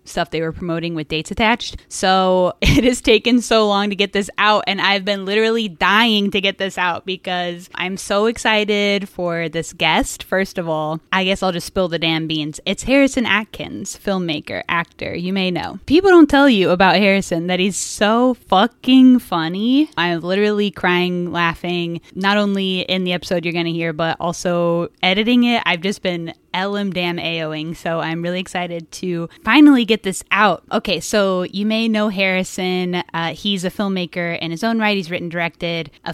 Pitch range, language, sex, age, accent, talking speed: 170-200 Hz, English, female, 10-29, American, 190 wpm